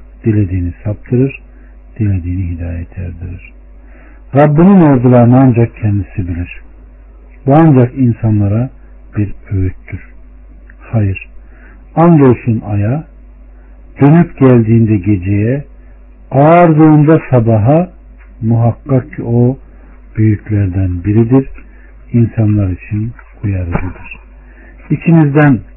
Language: Turkish